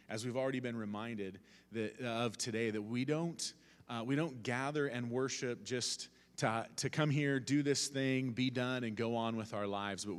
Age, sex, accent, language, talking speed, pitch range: 30-49, male, American, English, 195 wpm, 105-135 Hz